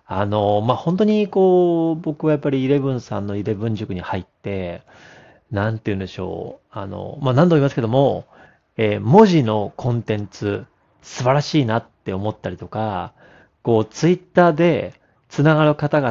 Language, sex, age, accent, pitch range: Japanese, male, 40-59, native, 105-145 Hz